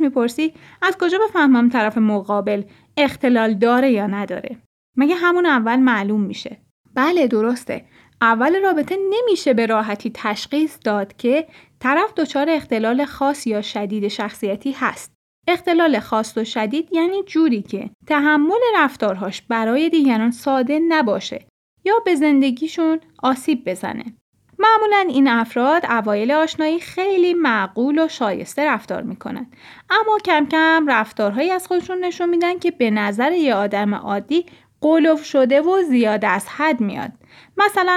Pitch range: 220-320 Hz